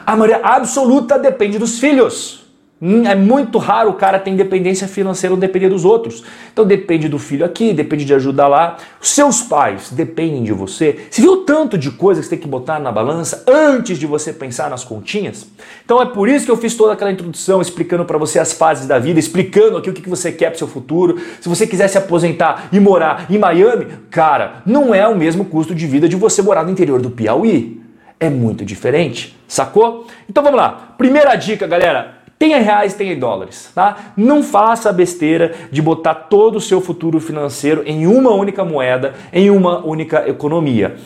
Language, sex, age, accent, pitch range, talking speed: Portuguese, male, 40-59, Brazilian, 165-220 Hz, 200 wpm